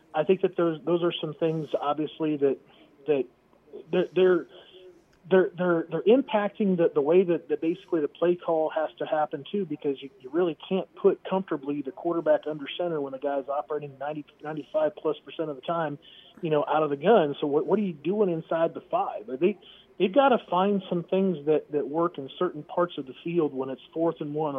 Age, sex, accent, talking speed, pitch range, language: 30-49, male, American, 215 wpm, 140-175 Hz, English